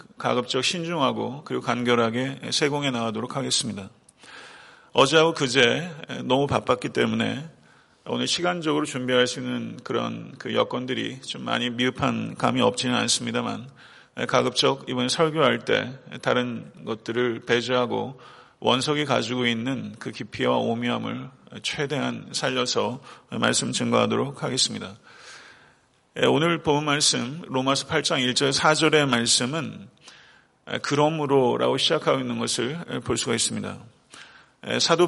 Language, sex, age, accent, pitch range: Korean, male, 40-59, native, 125-150 Hz